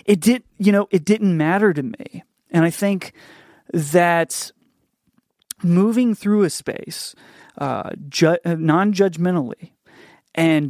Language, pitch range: English, 140-175 Hz